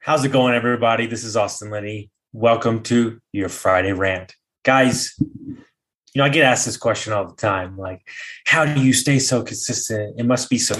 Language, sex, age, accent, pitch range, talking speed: English, male, 20-39, American, 105-125 Hz, 195 wpm